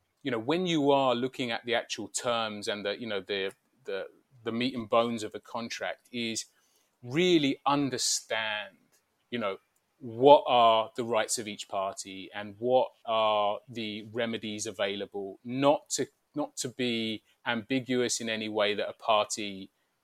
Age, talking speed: 30-49, 160 wpm